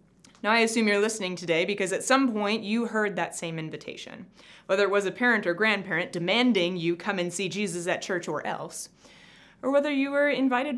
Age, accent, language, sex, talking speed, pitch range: 20-39, American, English, female, 205 wpm, 180-240 Hz